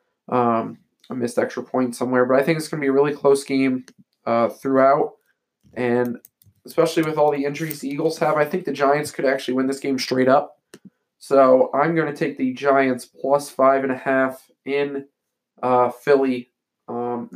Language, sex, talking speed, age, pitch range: English, male, 180 wpm, 20-39, 130-145 Hz